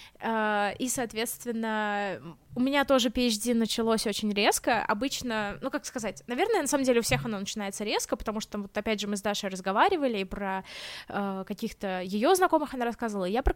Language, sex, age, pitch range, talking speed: Russian, female, 20-39, 210-260 Hz, 175 wpm